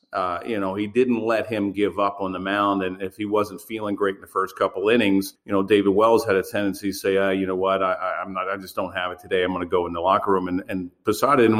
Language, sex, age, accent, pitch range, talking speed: English, male, 40-59, American, 100-115 Hz, 300 wpm